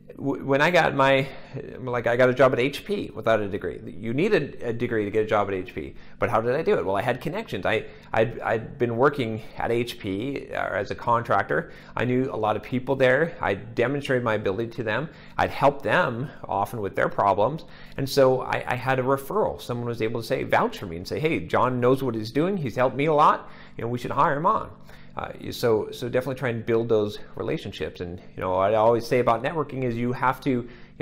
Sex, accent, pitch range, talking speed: male, American, 110-140 Hz, 235 wpm